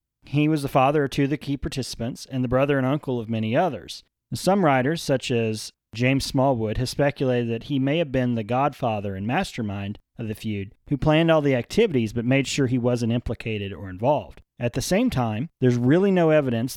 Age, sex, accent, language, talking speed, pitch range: 40-59, male, American, English, 210 wpm, 120-145 Hz